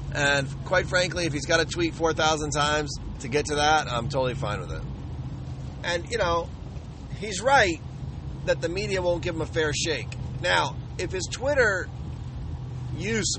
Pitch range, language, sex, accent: 115-145 Hz, English, male, American